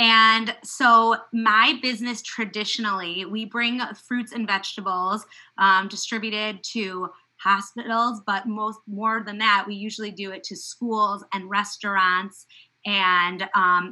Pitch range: 195-225 Hz